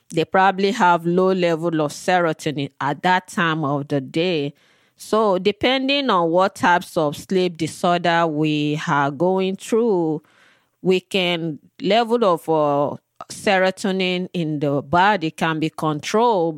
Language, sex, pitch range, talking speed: English, female, 155-185 Hz, 135 wpm